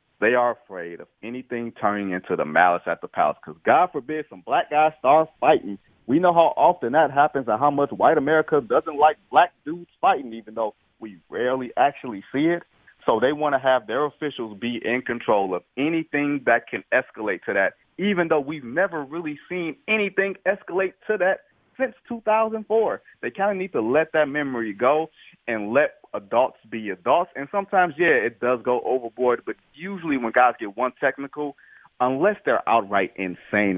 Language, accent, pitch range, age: English, American, 115-160 Hz, 30-49